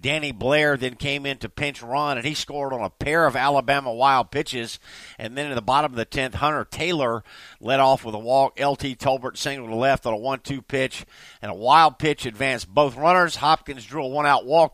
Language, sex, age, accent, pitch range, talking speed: English, male, 50-69, American, 120-150 Hz, 225 wpm